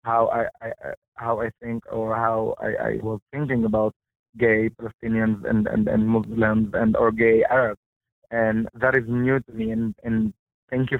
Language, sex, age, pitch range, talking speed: English, male, 20-39, 115-130 Hz, 180 wpm